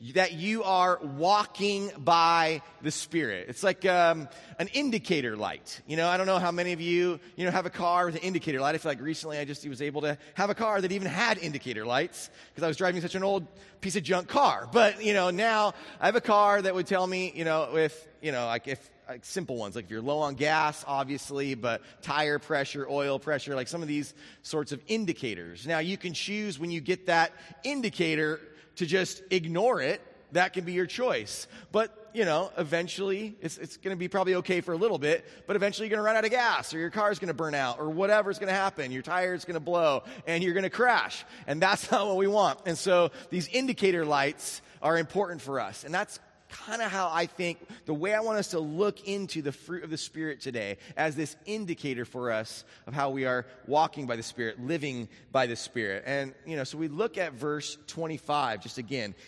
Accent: American